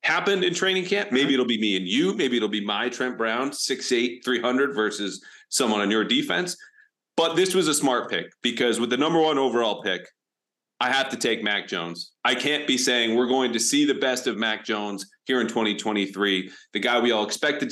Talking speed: 215 wpm